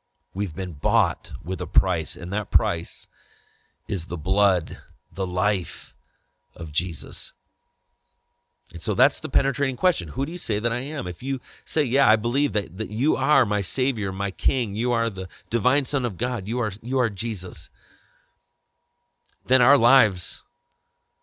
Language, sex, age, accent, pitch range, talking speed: English, male, 40-59, American, 90-125 Hz, 160 wpm